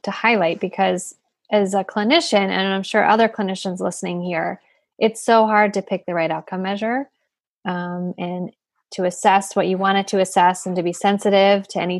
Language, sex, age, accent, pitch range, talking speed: English, female, 20-39, American, 185-210 Hz, 185 wpm